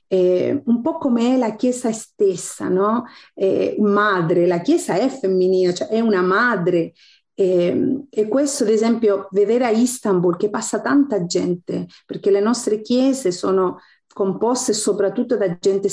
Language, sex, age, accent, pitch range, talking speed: Italian, female, 40-59, native, 195-255 Hz, 145 wpm